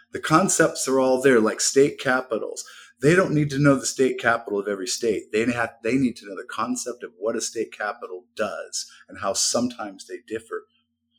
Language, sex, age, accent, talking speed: English, male, 50-69, American, 205 wpm